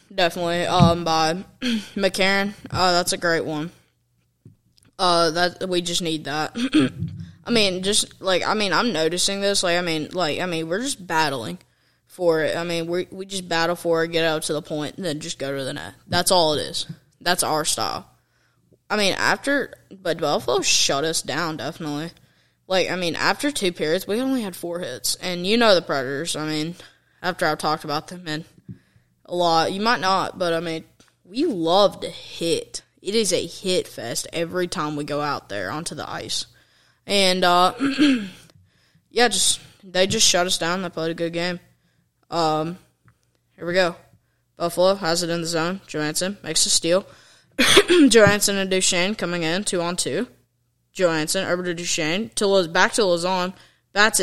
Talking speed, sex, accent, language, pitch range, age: 185 wpm, female, American, English, 160-195 Hz, 10-29